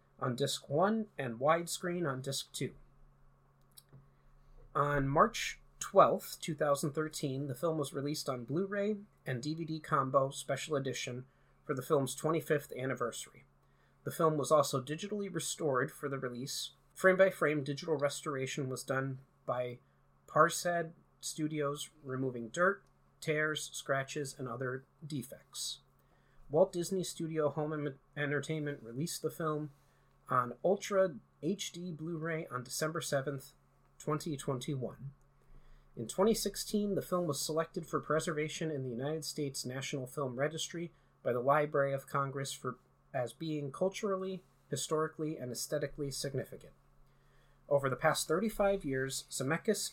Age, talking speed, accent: 30-49, 125 wpm, American